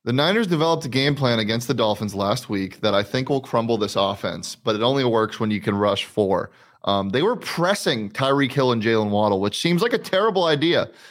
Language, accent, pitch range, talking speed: English, American, 110-150 Hz, 225 wpm